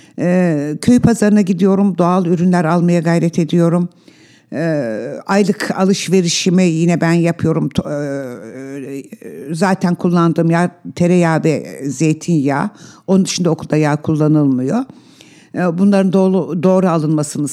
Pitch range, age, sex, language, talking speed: 155-195 Hz, 60-79, female, Turkish, 95 wpm